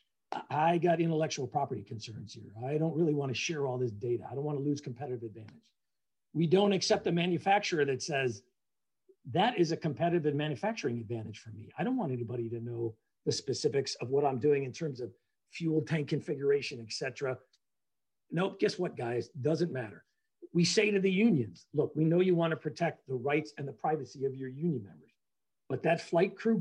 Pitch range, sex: 130-175 Hz, male